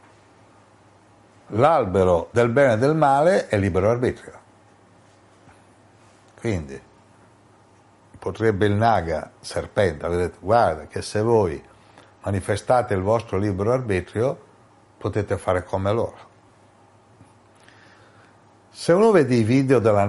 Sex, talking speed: male, 100 wpm